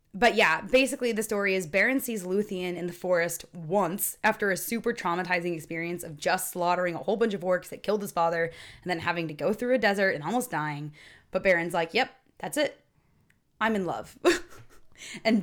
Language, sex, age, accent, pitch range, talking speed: English, female, 20-39, American, 170-215 Hz, 200 wpm